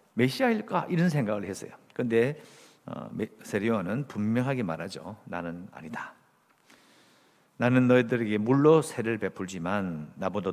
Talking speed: 90 wpm